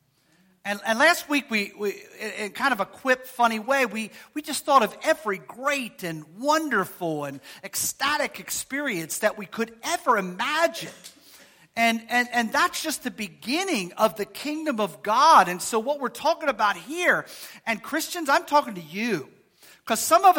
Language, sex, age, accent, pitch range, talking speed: English, male, 40-59, American, 195-280 Hz, 180 wpm